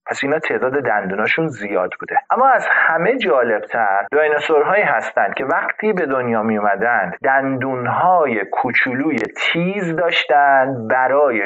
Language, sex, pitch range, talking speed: Persian, male, 115-160 Hz, 120 wpm